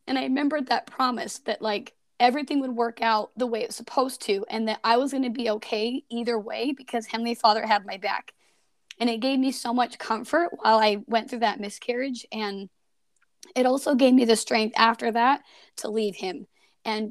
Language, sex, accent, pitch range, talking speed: English, female, American, 215-255 Hz, 205 wpm